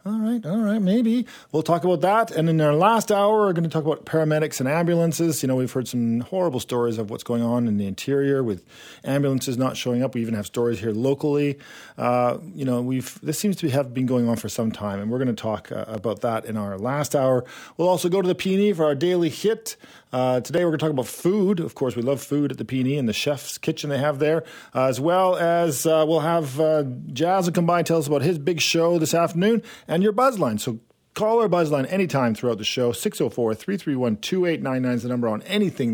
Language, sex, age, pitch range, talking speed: English, male, 40-59, 125-175 Hz, 245 wpm